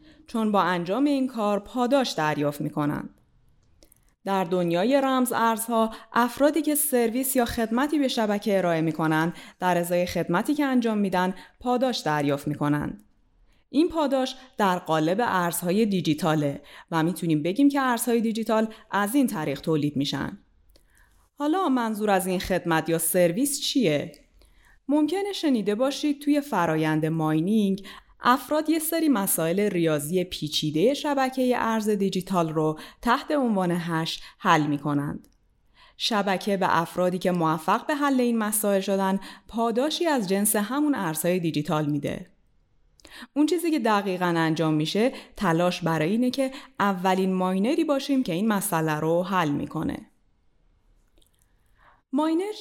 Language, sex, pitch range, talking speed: Persian, female, 170-260 Hz, 130 wpm